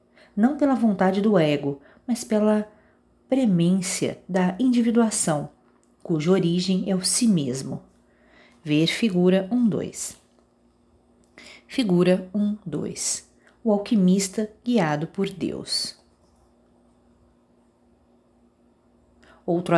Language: Portuguese